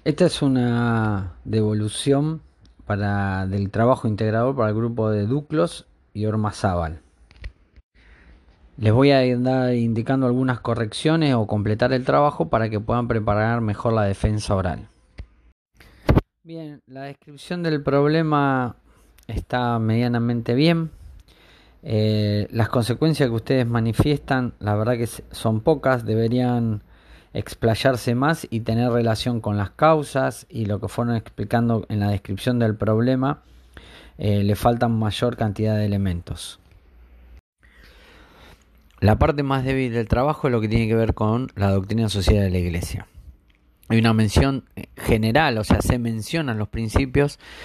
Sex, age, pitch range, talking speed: male, 30-49, 100-125 Hz, 135 wpm